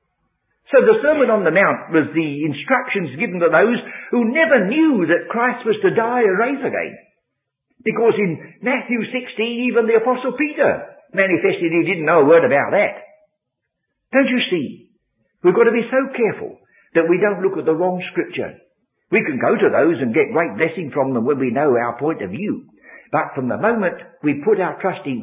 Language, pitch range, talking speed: English, 155-245 Hz, 195 wpm